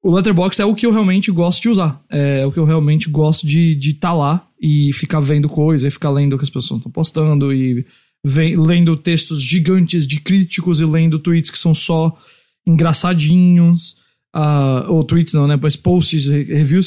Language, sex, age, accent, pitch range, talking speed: English, male, 20-39, Brazilian, 155-190 Hz, 195 wpm